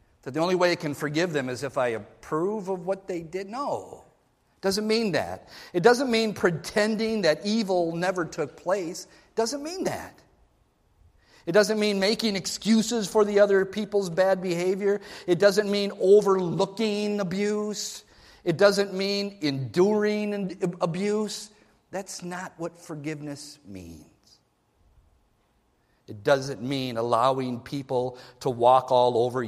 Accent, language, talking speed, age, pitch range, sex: American, English, 135 wpm, 50-69, 135-195 Hz, male